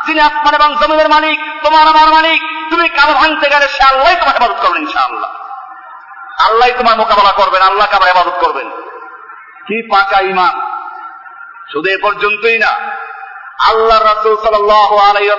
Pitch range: 215-250 Hz